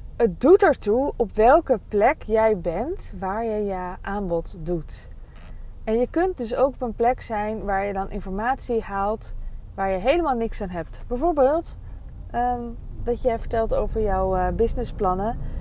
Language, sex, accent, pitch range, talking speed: Dutch, female, Dutch, 195-260 Hz, 160 wpm